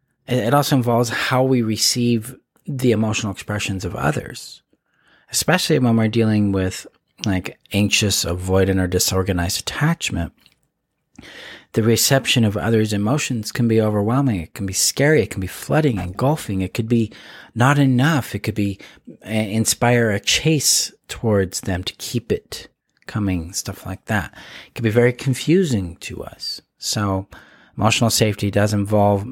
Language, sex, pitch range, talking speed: English, male, 95-125 Hz, 145 wpm